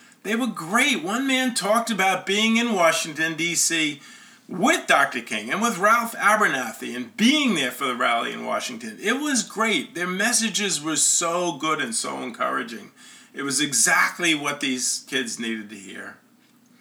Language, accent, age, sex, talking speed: English, American, 40-59, male, 165 wpm